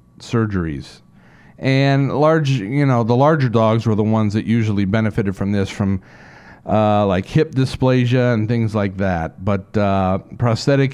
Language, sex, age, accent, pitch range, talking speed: English, male, 50-69, American, 110-140 Hz, 155 wpm